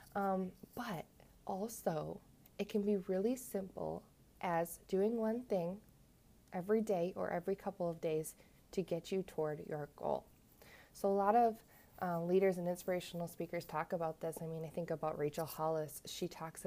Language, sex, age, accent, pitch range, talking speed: English, female, 20-39, American, 160-195 Hz, 165 wpm